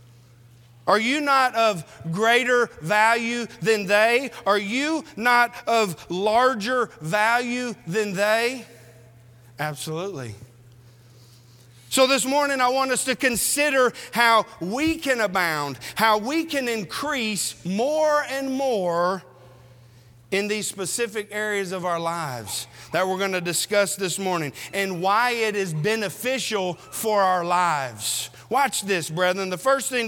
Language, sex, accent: English, male, American